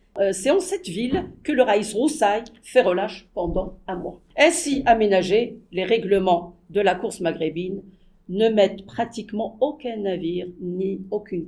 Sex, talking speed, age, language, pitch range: female, 145 wpm, 50-69, English, 190-260 Hz